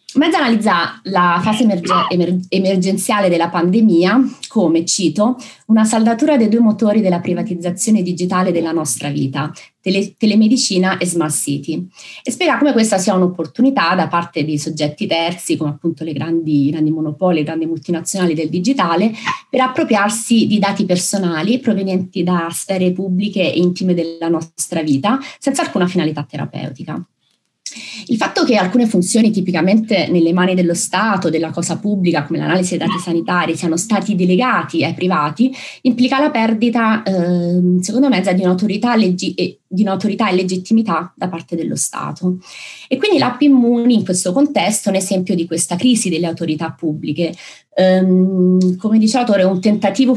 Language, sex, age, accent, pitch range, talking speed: Italian, female, 30-49, native, 170-220 Hz, 150 wpm